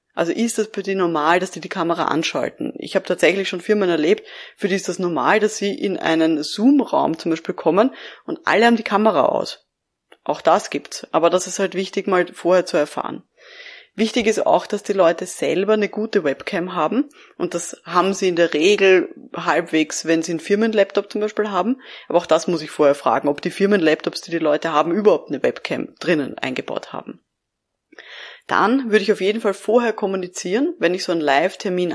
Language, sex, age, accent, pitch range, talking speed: German, female, 20-39, German, 170-225 Hz, 200 wpm